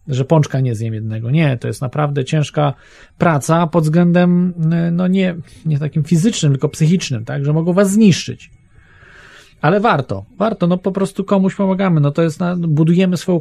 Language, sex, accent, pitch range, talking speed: Polish, male, native, 130-170 Hz, 175 wpm